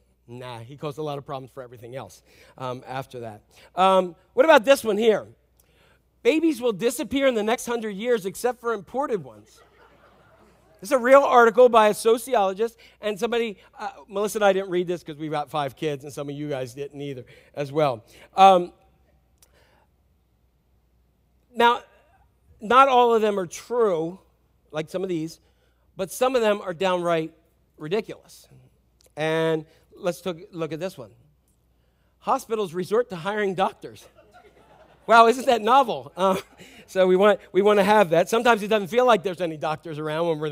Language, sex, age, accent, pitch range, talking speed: English, male, 40-59, American, 150-225 Hz, 170 wpm